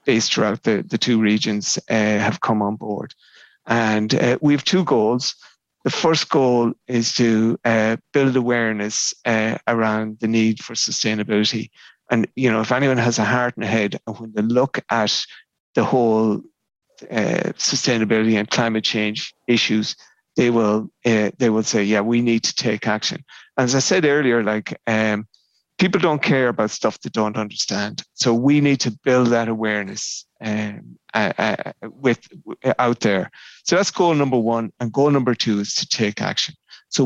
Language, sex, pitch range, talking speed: English, male, 110-130 Hz, 175 wpm